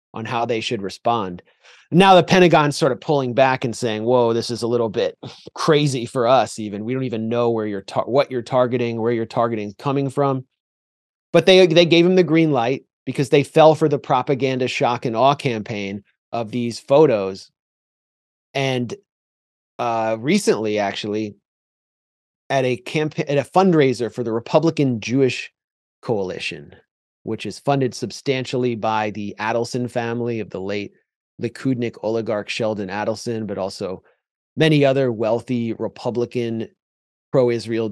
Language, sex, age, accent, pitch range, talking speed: English, male, 30-49, American, 110-135 Hz, 155 wpm